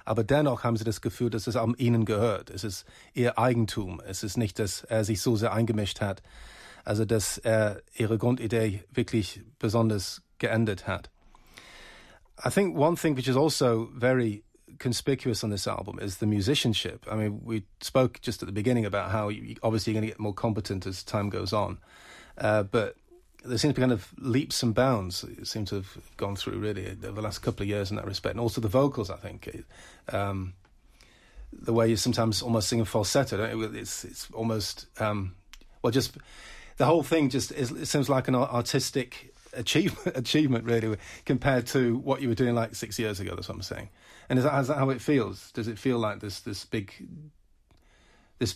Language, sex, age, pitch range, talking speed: German, male, 30-49, 105-125 Hz, 205 wpm